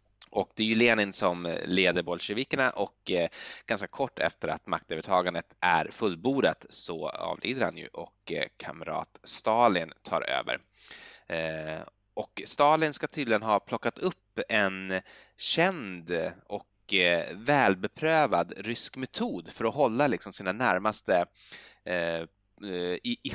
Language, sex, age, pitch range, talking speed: Swedish, male, 20-39, 95-130 Hz, 115 wpm